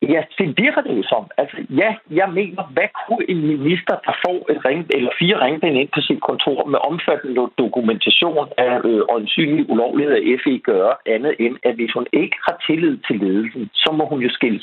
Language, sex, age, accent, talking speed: Danish, male, 60-79, native, 205 wpm